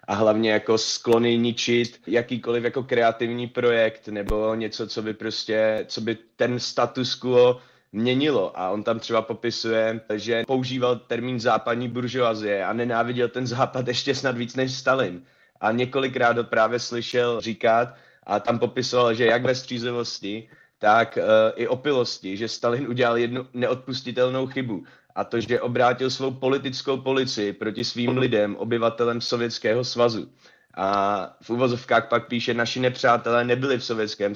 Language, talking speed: Slovak, 140 wpm